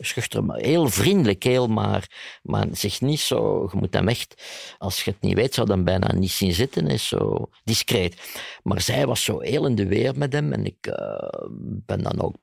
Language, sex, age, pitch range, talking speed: Dutch, male, 50-69, 95-125 Hz, 215 wpm